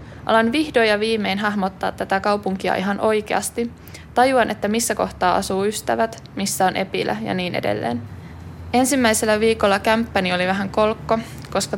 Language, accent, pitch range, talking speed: Finnish, native, 190-220 Hz, 145 wpm